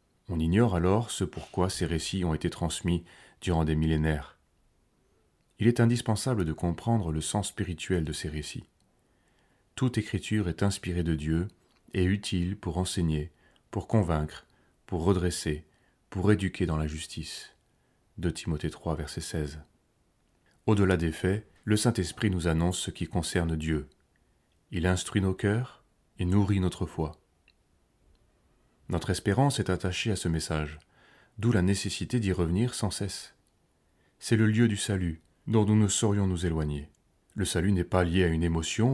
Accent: French